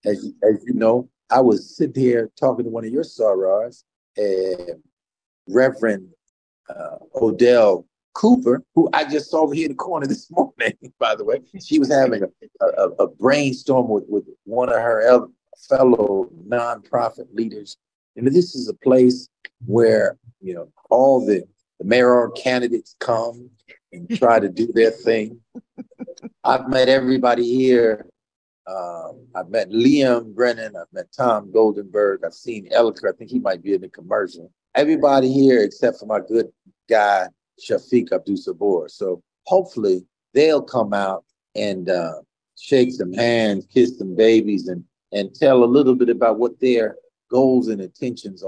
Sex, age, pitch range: male, 50-69, 110-155 Hz